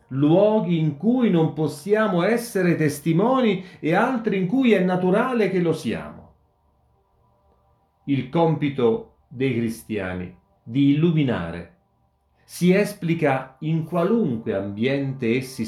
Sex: male